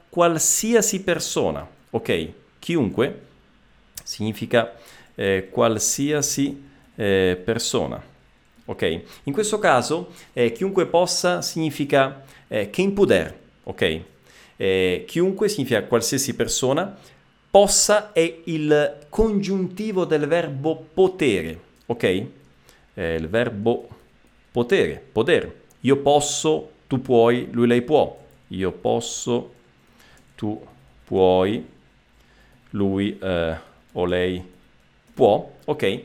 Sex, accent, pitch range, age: male, native, 110-175 Hz, 40-59